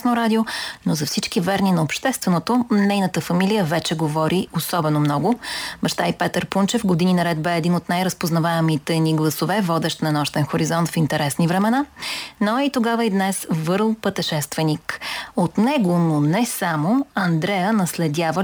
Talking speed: 150 wpm